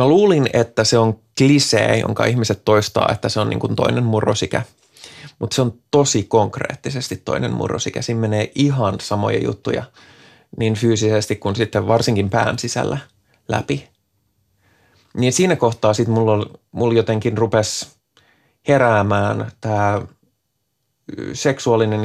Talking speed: 125 wpm